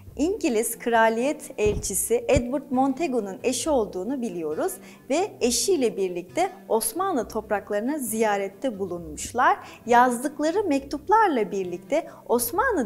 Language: Turkish